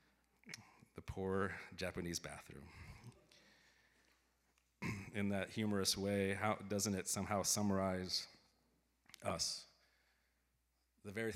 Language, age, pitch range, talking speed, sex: English, 30-49, 85-110 Hz, 80 wpm, male